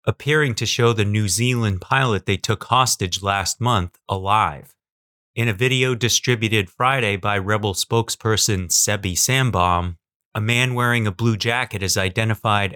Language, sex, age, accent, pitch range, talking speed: English, male, 30-49, American, 95-120 Hz, 145 wpm